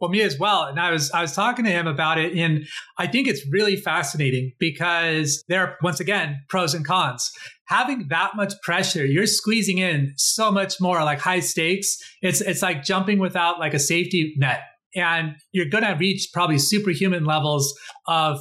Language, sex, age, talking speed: English, male, 30-49, 190 wpm